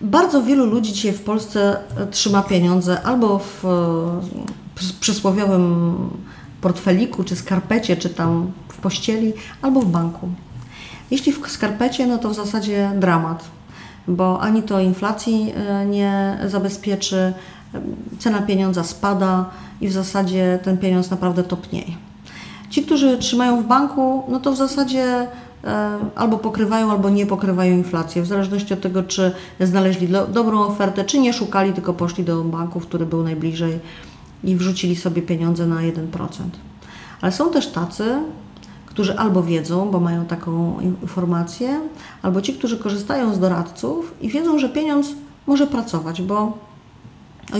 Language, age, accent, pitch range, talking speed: Polish, 40-59, native, 180-230 Hz, 135 wpm